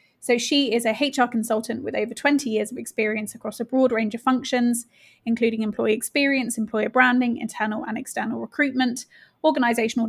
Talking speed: 165 wpm